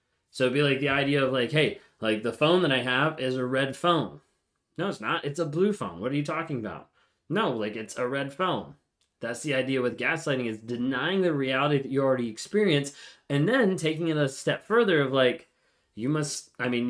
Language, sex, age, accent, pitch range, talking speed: English, male, 20-39, American, 125-155 Hz, 225 wpm